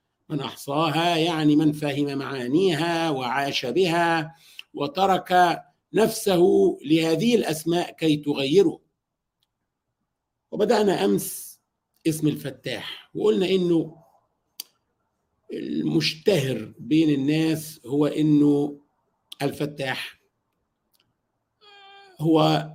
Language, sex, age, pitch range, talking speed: Arabic, male, 50-69, 145-170 Hz, 70 wpm